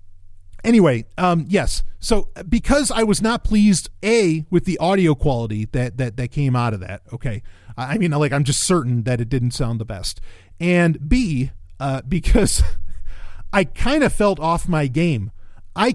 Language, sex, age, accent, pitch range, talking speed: English, male, 40-59, American, 105-175 Hz, 175 wpm